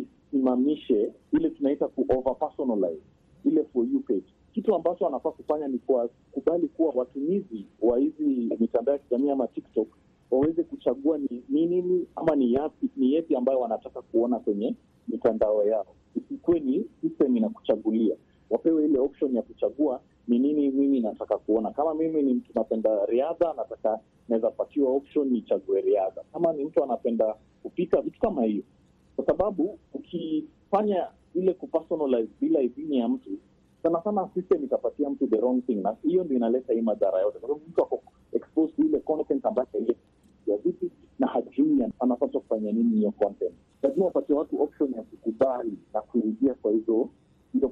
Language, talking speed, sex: Swahili, 160 wpm, male